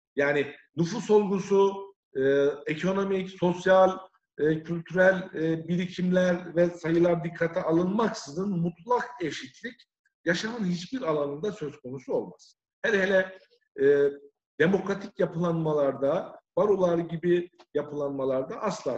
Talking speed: 100 wpm